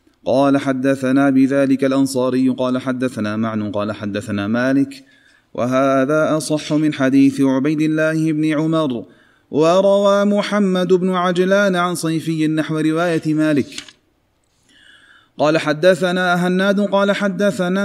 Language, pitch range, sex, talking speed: Arabic, 140-180 Hz, male, 110 wpm